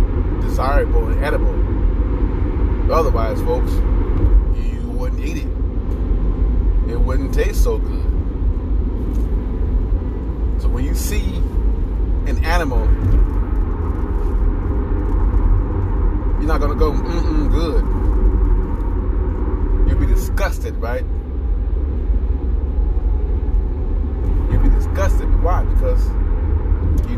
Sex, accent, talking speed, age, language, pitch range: male, American, 85 wpm, 30-49, English, 80-90 Hz